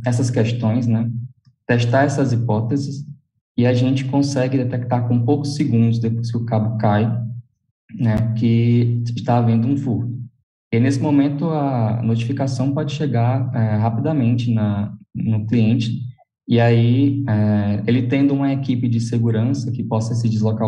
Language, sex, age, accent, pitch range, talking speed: English, male, 20-39, Brazilian, 110-130 Hz, 135 wpm